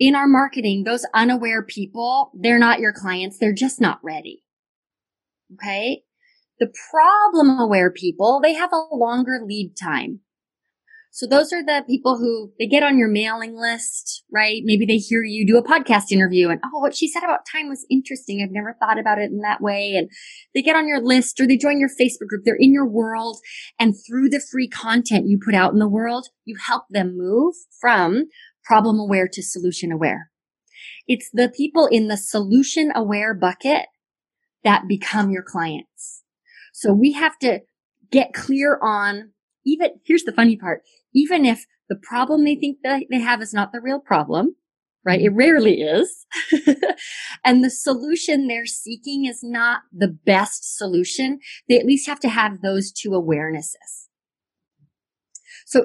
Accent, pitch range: American, 210-280 Hz